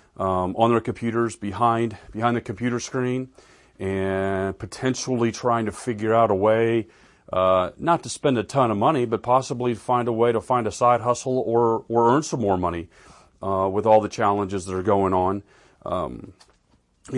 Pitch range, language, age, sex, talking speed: 95-120 Hz, English, 40-59, male, 180 wpm